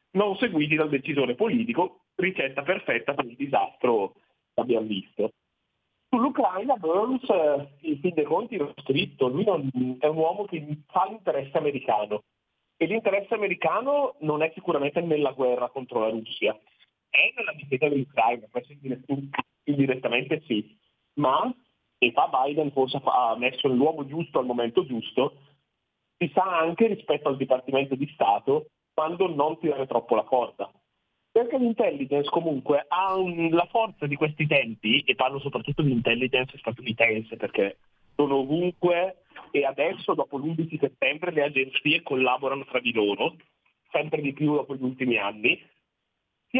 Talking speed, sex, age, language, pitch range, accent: 145 wpm, male, 40-59, Italian, 130-180 Hz, native